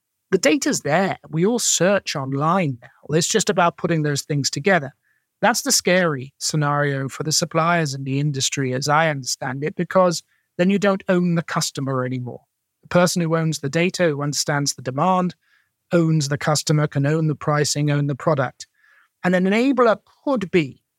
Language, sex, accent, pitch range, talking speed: English, male, British, 145-195 Hz, 175 wpm